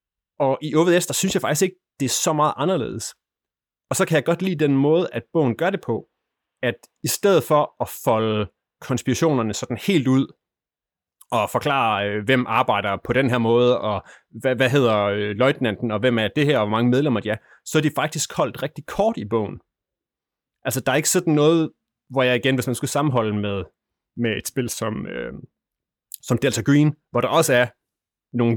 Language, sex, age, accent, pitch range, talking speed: Danish, male, 30-49, native, 115-150 Hz, 200 wpm